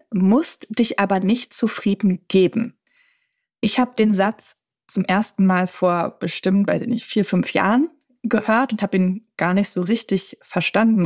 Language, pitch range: German, 185-235 Hz